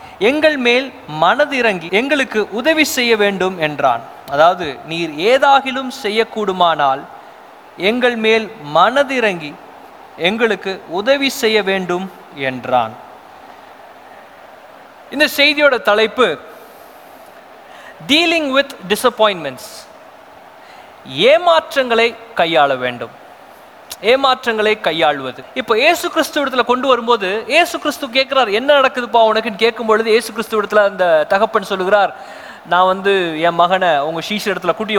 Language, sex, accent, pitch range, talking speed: Tamil, male, native, 195-275 Hz, 75 wpm